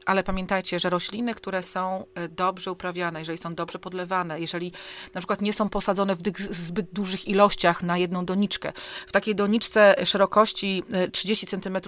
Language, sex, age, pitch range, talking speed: Polish, female, 40-59, 180-205 Hz, 155 wpm